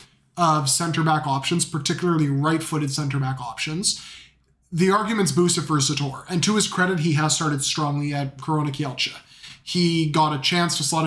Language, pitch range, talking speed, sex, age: English, 150-175 Hz, 155 wpm, male, 20-39